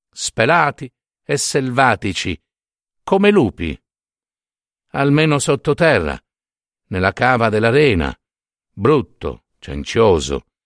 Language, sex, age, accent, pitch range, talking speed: Italian, male, 50-69, native, 110-180 Hz, 70 wpm